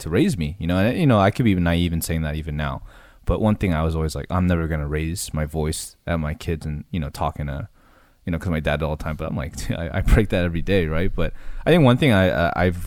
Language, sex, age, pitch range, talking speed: English, male, 20-39, 80-100 Hz, 295 wpm